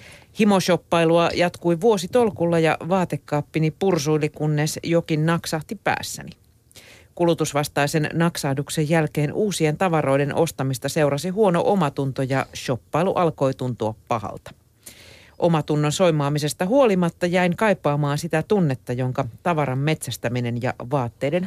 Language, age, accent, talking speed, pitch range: Finnish, 40-59, native, 100 wpm, 130-175 Hz